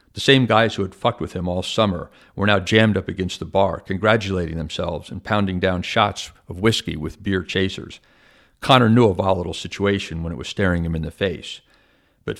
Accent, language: American, English